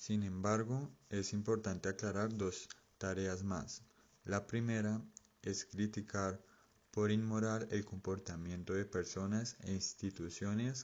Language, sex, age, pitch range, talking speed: Spanish, male, 20-39, 95-110 Hz, 110 wpm